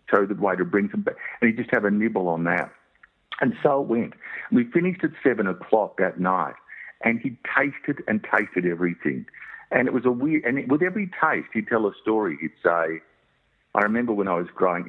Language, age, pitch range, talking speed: English, 50-69, 85-110 Hz, 215 wpm